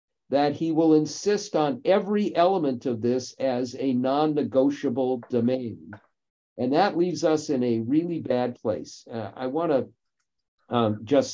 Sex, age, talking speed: male, 50-69, 145 wpm